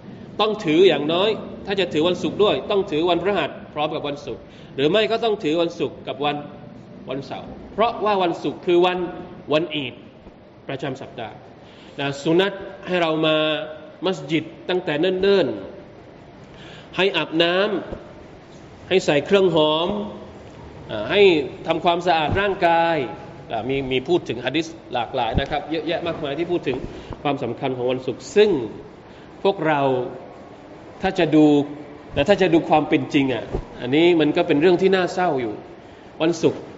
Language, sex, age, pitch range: Thai, male, 20-39, 145-180 Hz